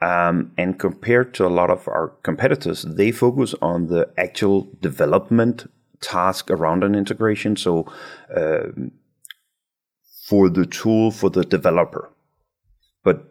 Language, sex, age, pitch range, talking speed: English, male, 30-49, 85-100 Hz, 125 wpm